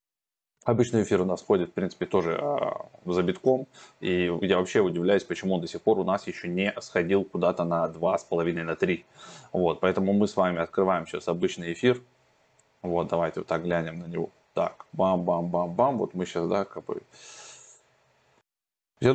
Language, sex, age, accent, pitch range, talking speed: Russian, male, 20-39, native, 85-105 Hz, 170 wpm